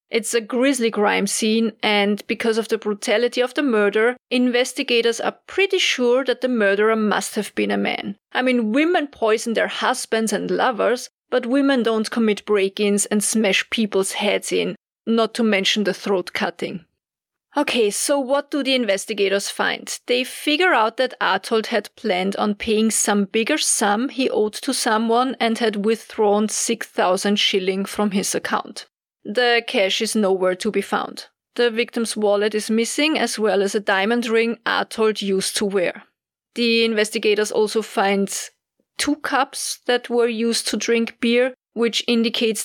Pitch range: 210-245 Hz